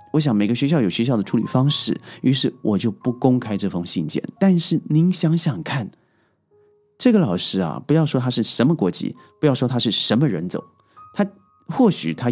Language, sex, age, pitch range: Chinese, male, 30-49, 105-165 Hz